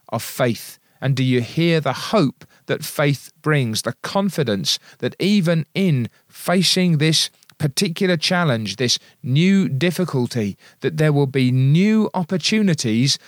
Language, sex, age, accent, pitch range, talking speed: English, male, 40-59, British, 130-180 Hz, 130 wpm